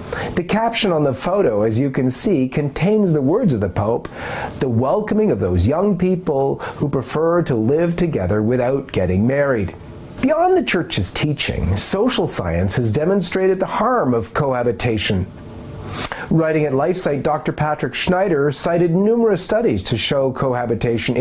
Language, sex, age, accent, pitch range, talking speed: English, male, 40-59, American, 115-165 Hz, 150 wpm